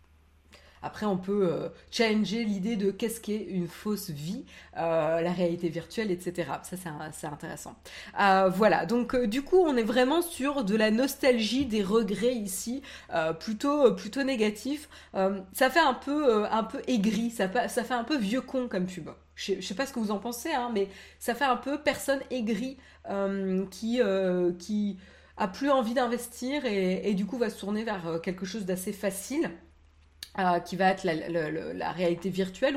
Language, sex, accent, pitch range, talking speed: French, female, French, 185-245 Hz, 200 wpm